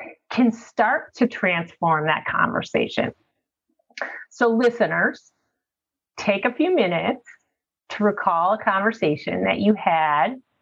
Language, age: English, 30-49